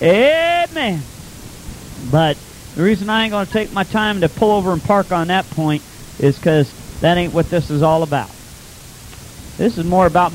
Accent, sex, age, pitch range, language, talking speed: American, male, 40-59, 145-190 Hz, English, 185 wpm